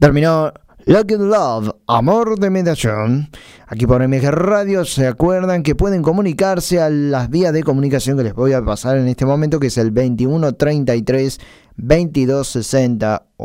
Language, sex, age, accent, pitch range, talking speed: Spanish, male, 20-39, Argentinian, 120-160 Hz, 145 wpm